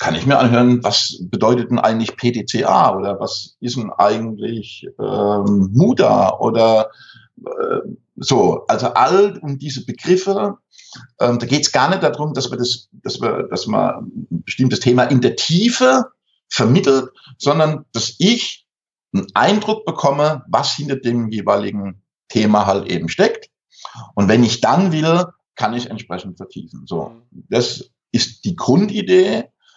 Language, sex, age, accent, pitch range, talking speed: German, male, 60-79, German, 105-150 Hz, 145 wpm